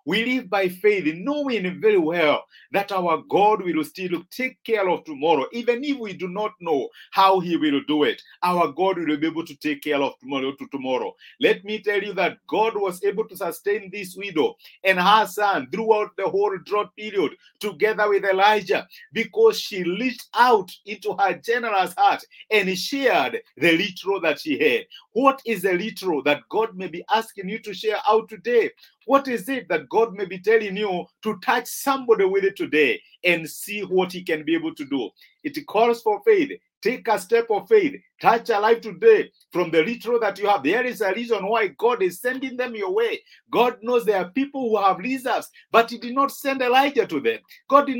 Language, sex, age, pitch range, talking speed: English, male, 50-69, 195-270 Hz, 205 wpm